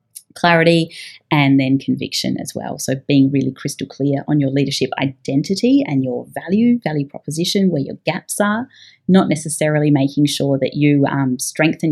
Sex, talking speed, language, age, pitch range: female, 160 wpm, English, 30-49, 140-165 Hz